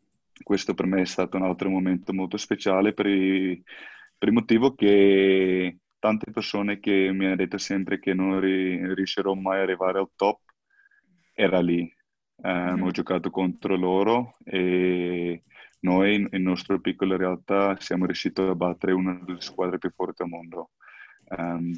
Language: Italian